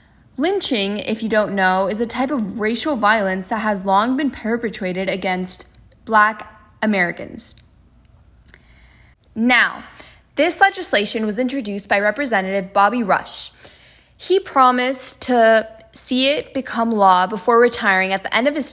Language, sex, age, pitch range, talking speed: English, female, 10-29, 200-265 Hz, 135 wpm